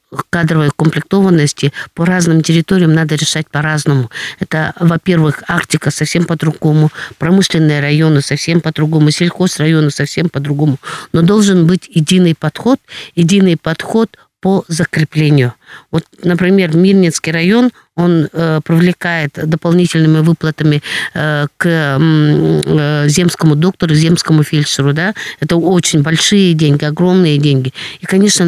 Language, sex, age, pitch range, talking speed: Russian, female, 50-69, 150-175 Hz, 120 wpm